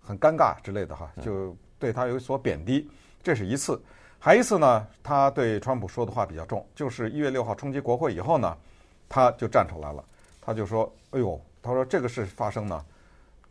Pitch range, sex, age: 95-135 Hz, male, 50-69